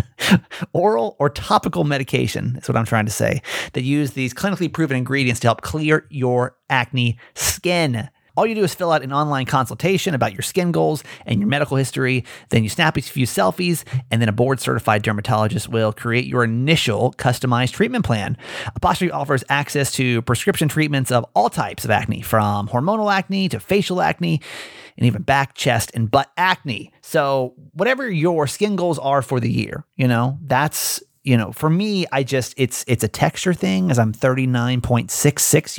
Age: 30-49